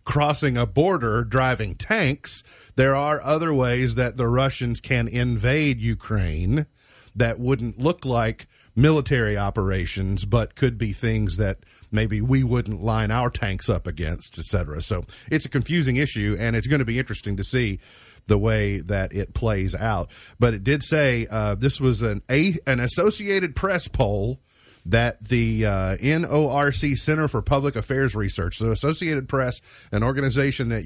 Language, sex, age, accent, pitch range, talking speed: English, male, 40-59, American, 110-140 Hz, 160 wpm